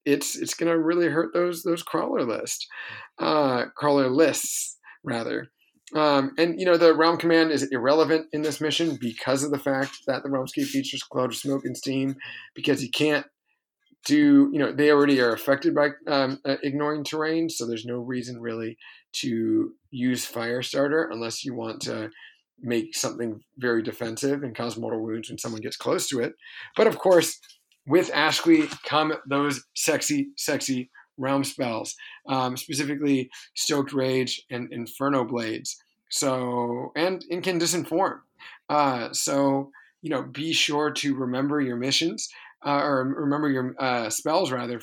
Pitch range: 125-160 Hz